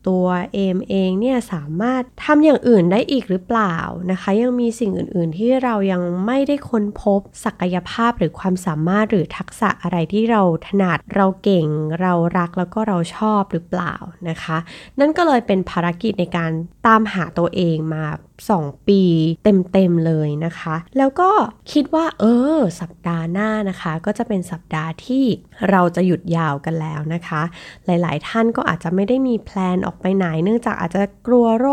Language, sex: Thai, female